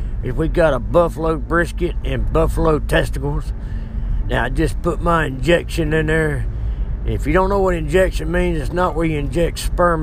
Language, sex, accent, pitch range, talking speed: English, male, American, 115-175 Hz, 180 wpm